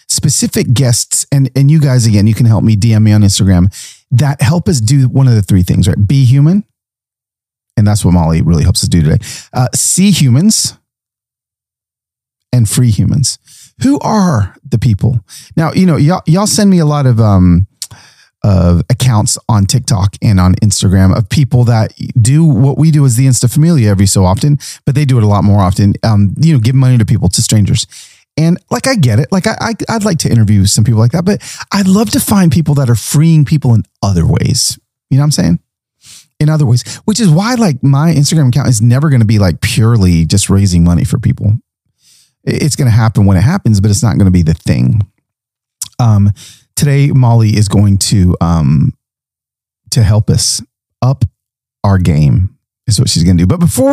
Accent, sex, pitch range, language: American, male, 105-145 Hz, English